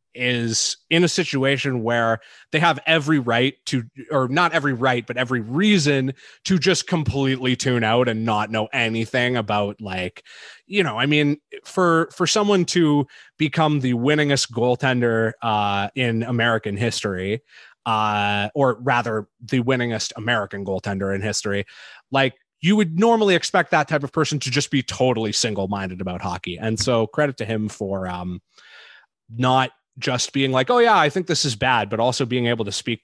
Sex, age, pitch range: male, 30-49, 105-145 Hz